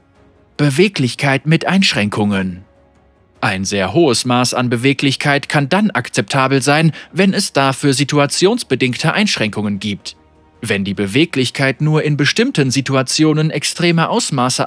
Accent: German